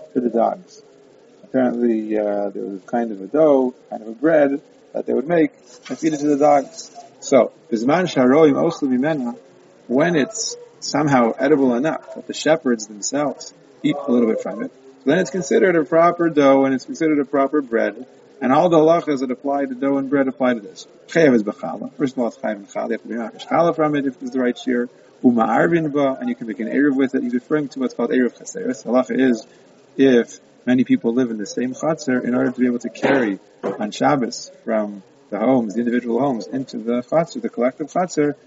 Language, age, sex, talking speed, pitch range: English, 40-59, male, 190 wpm, 120-155 Hz